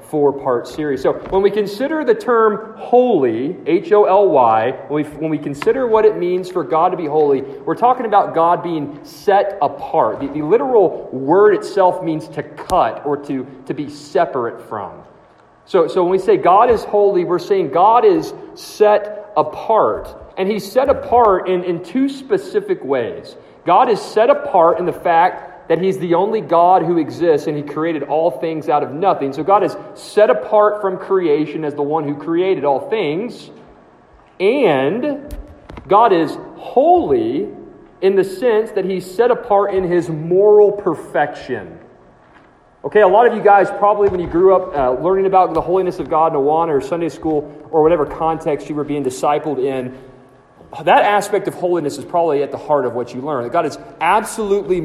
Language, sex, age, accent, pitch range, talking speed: English, male, 40-59, American, 150-210 Hz, 185 wpm